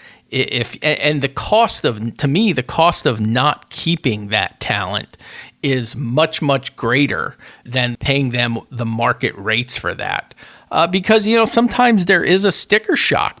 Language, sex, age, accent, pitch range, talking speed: English, male, 40-59, American, 115-150 Hz, 160 wpm